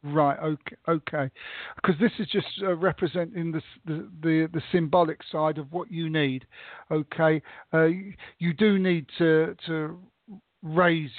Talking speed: 150 wpm